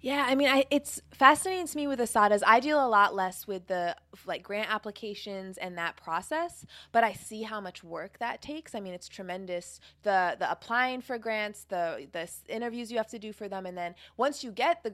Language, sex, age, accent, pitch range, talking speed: English, female, 20-39, American, 180-230 Hz, 220 wpm